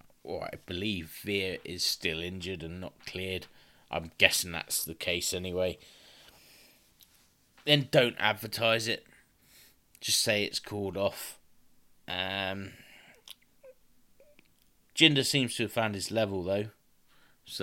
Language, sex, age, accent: English, male, 20-39, British